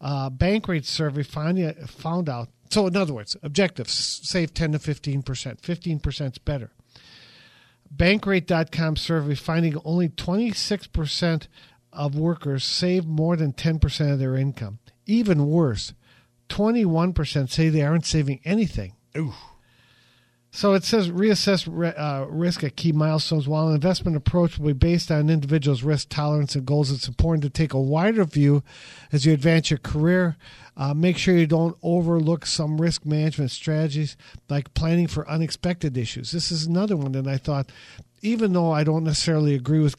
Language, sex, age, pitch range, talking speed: English, male, 50-69, 135-165 Hz, 155 wpm